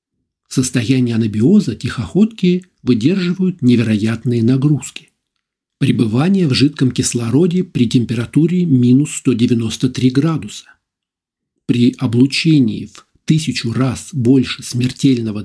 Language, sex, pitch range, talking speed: Russian, male, 120-155 Hz, 85 wpm